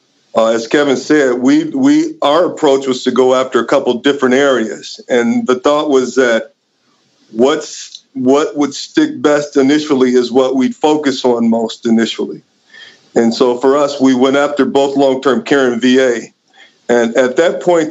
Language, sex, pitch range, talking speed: English, male, 125-145 Hz, 170 wpm